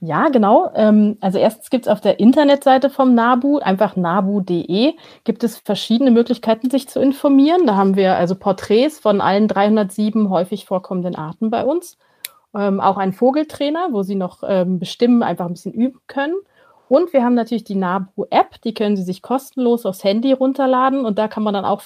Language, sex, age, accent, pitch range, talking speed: German, female, 30-49, German, 195-250 Hz, 180 wpm